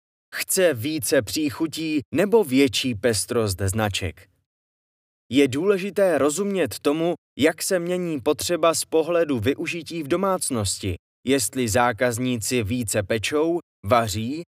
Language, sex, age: Czech, male, 20-39